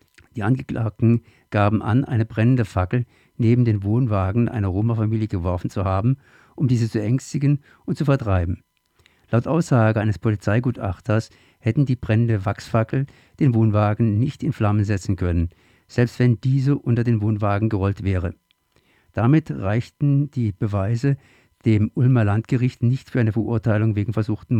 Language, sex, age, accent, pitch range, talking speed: German, male, 50-69, German, 100-125 Hz, 140 wpm